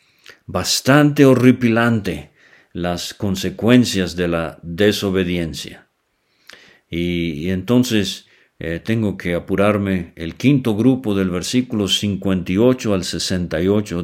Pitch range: 90-120 Hz